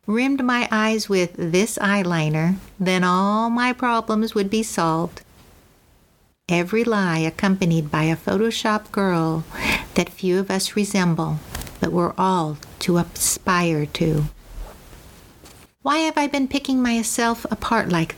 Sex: female